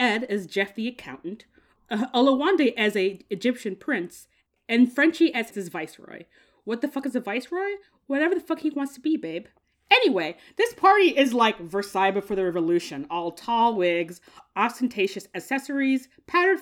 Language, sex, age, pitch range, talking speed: English, female, 30-49, 200-315 Hz, 165 wpm